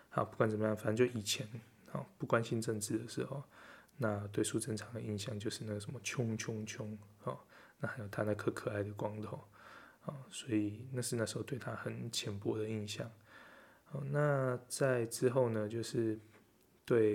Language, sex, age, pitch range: Chinese, male, 20-39, 105-120 Hz